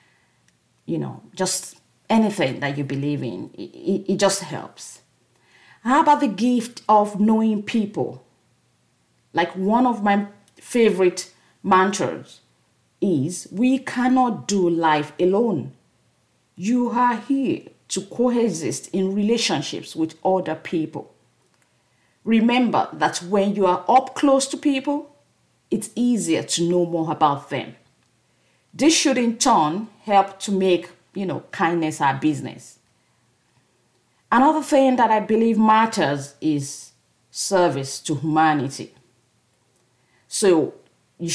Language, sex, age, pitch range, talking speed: English, female, 40-59, 155-225 Hz, 120 wpm